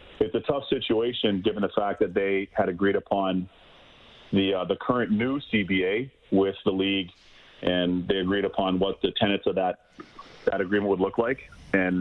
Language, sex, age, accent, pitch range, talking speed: English, male, 40-59, American, 95-105 Hz, 180 wpm